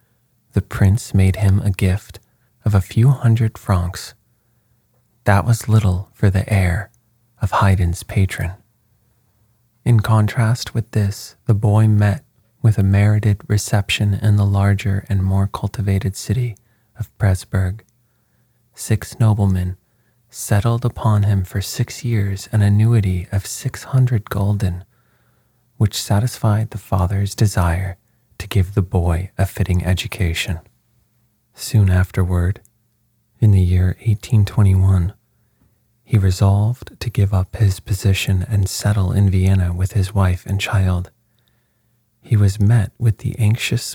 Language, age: English, 30-49